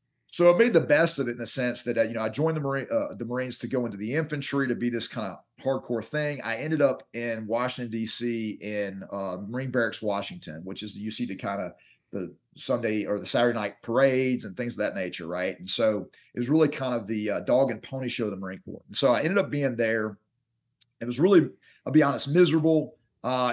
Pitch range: 110-135 Hz